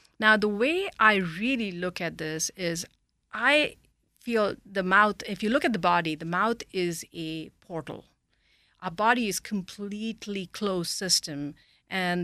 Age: 50-69